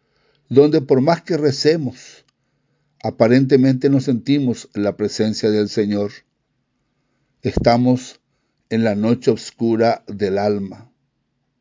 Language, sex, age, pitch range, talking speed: English, male, 60-79, 120-145 Hz, 100 wpm